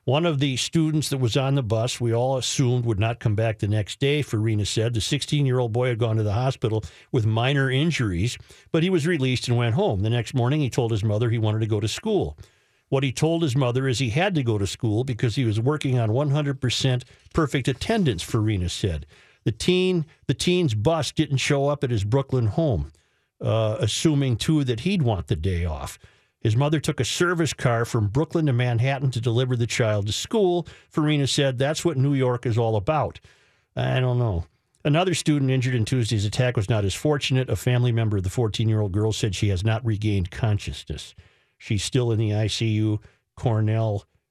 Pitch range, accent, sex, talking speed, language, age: 110-135 Hz, American, male, 205 wpm, English, 50-69